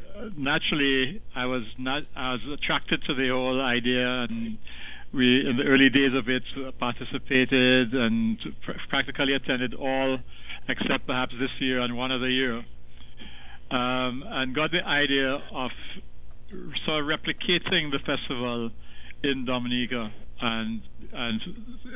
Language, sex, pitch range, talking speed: English, male, 120-140 Hz, 130 wpm